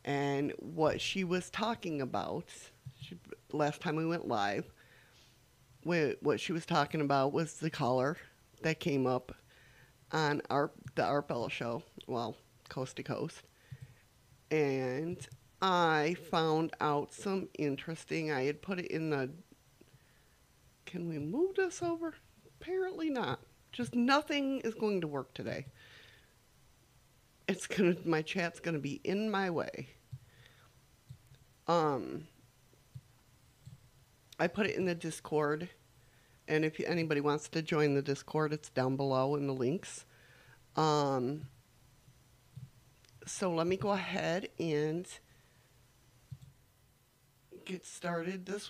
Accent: American